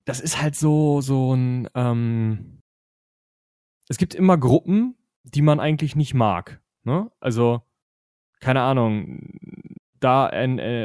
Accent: German